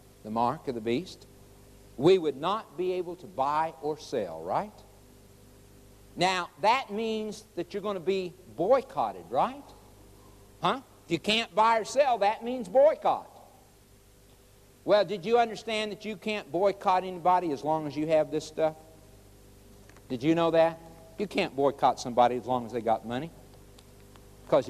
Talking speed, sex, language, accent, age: 160 wpm, male, English, American, 60-79